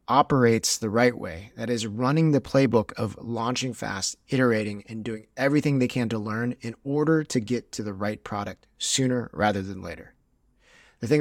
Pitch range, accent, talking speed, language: 100-125 Hz, American, 180 wpm, English